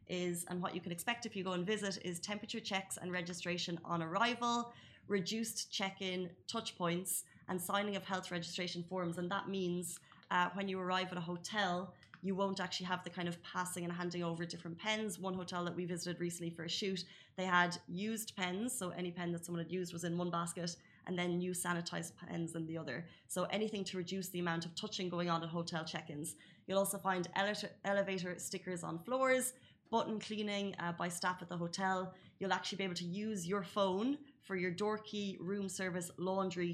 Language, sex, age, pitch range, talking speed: Arabic, female, 20-39, 175-200 Hz, 205 wpm